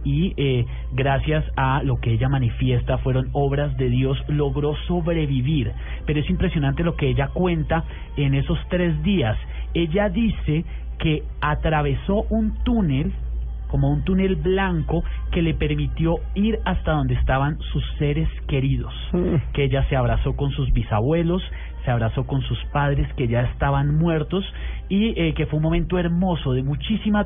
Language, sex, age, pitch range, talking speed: English, male, 30-49, 125-165 Hz, 155 wpm